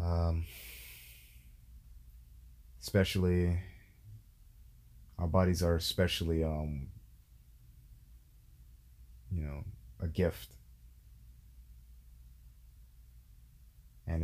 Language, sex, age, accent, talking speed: English, male, 30-49, American, 50 wpm